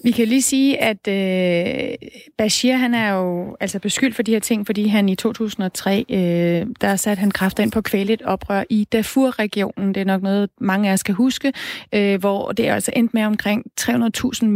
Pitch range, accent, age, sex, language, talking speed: 200-240 Hz, native, 30-49, female, Danish, 210 wpm